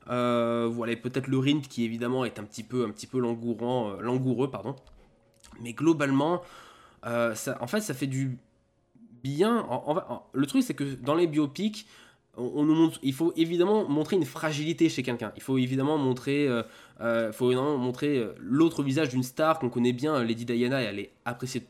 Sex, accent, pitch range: male, French, 120-155 Hz